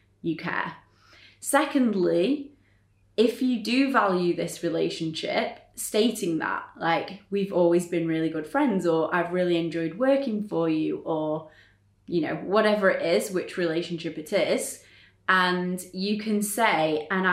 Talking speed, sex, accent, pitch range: 140 wpm, female, British, 170-225 Hz